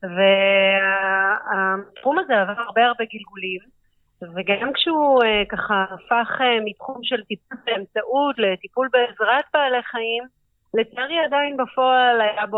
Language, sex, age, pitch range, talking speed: Hebrew, female, 30-49, 190-245 Hz, 110 wpm